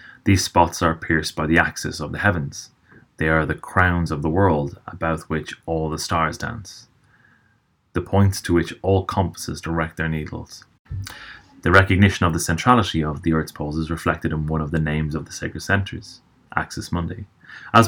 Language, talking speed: English, 185 wpm